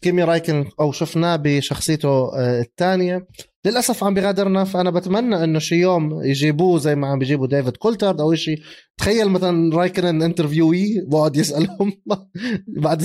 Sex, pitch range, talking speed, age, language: male, 145-180 Hz, 140 wpm, 20-39, Arabic